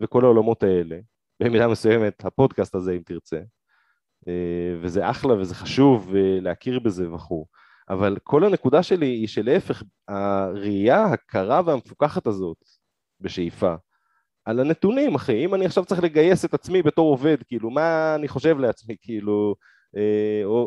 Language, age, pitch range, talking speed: Hebrew, 30-49, 100-145 Hz, 135 wpm